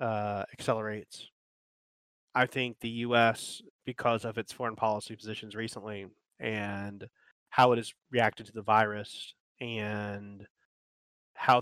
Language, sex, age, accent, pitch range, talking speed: English, male, 20-39, American, 105-125 Hz, 120 wpm